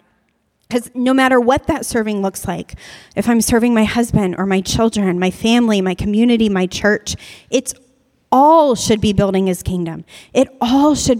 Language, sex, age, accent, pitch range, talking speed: English, female, 30-49, American, 200-270 Hz, 170 wpm